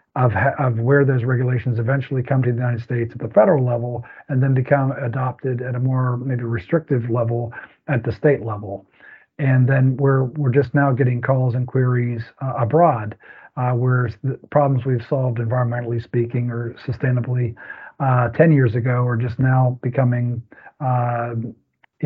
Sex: male